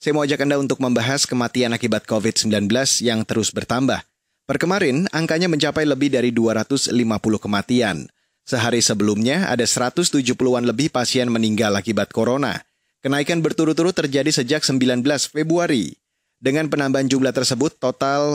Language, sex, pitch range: Indonesian, male, 115-145 Hz